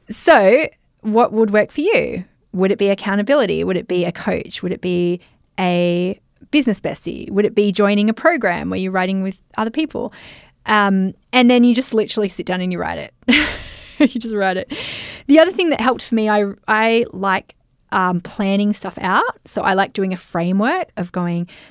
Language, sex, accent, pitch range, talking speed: English, female, Australian, 185-240 Hz, 195 wpm